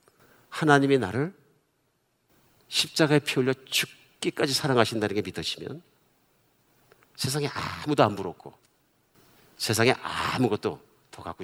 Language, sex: Korean, male